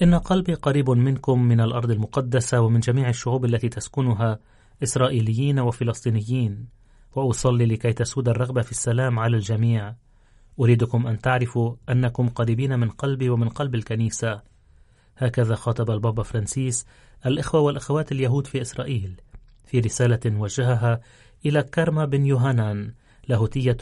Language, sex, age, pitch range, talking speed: Arabic, male, 30-49, 115-135 Hz, 125 wpm